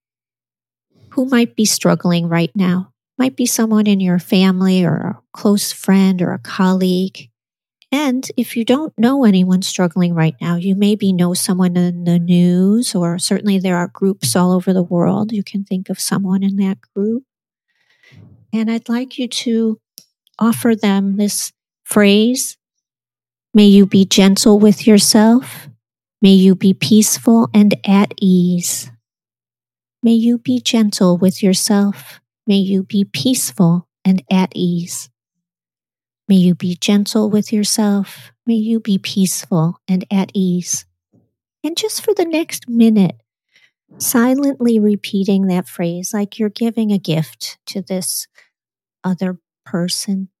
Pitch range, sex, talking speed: 180-220 Hz, female, 140 wpm